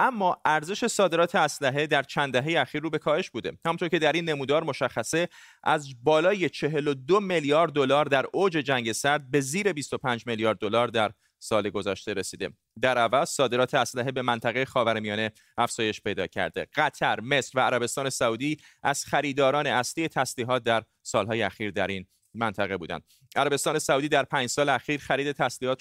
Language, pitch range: Persian, 120-150 Hz